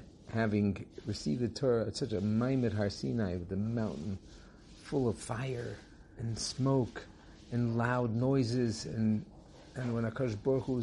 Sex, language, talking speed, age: male, English, 140 wpm, 50-69